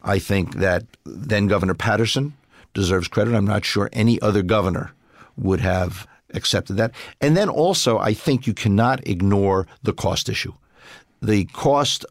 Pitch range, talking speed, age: 100-125 Hz, 150 wpm, 50-69